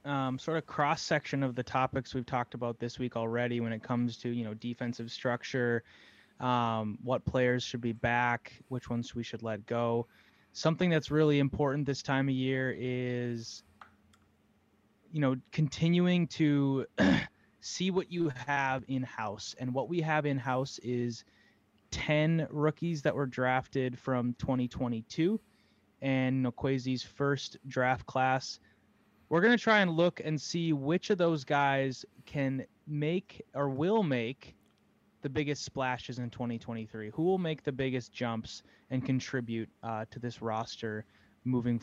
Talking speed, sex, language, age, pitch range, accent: 155 wpm, male, English, 20-39, 120-145 Hz, American